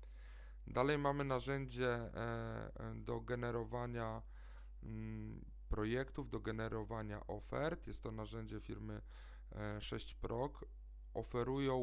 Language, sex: Polish, male